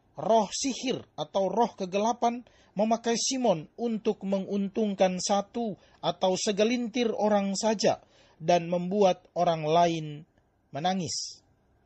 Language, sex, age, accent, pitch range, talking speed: Indonesian, male, 40-59, native, 175-235 Hz, 95 wpm